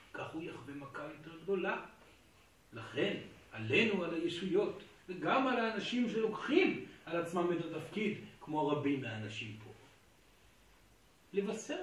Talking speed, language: 115 wpm, Hebrew